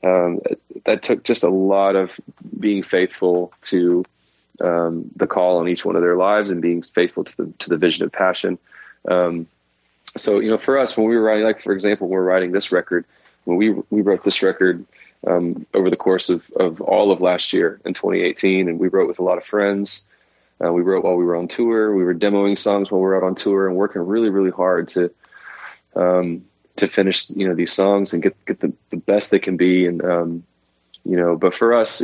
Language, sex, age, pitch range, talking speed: English, male, 20-39, 90-105 Hz, 225 wpm